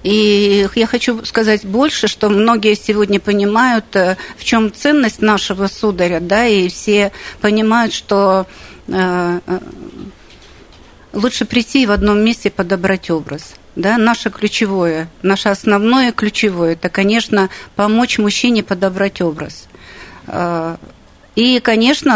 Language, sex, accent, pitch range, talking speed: Russian, female, native, 195-235 Hz, 115 wpm